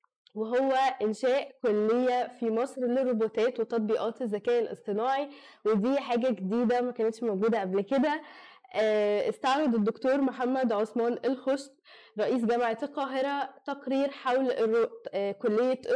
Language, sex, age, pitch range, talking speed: Arabic, female, 10-29, 220-265 Hz, 105 wpm